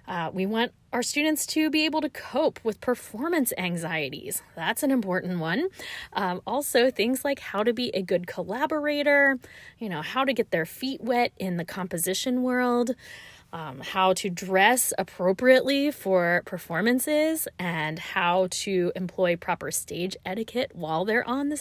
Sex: female